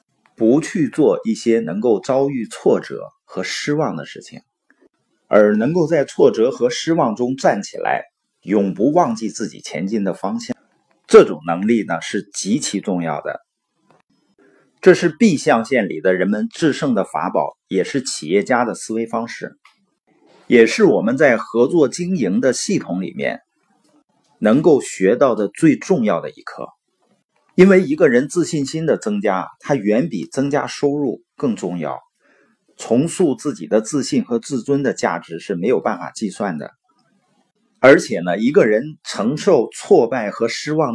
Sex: male